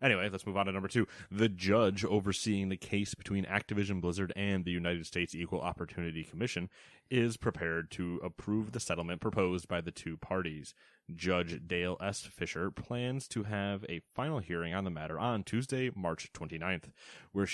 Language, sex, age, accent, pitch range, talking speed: English, male, 30-49, American, 90-115 Hz, 175 wpm